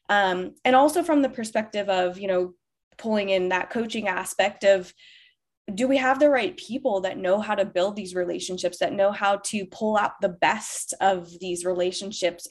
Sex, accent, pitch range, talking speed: female, American, 180-215 Hz, 185 wpm